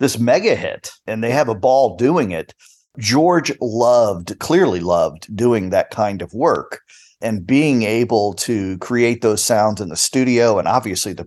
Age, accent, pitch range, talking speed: 50-69, American, 105-135 Hz, 170 wpm